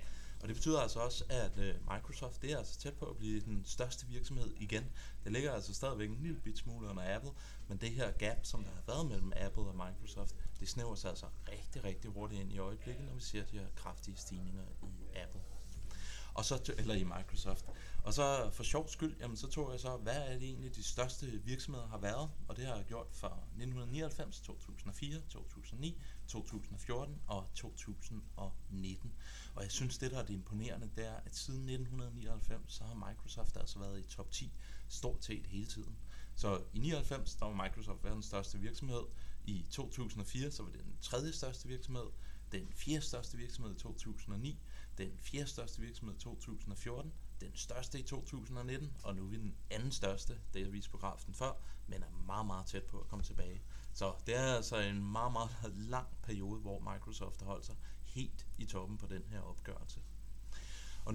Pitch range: 100-125 Hz